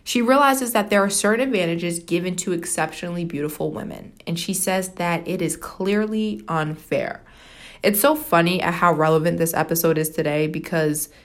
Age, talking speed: 20-39, 165 wpm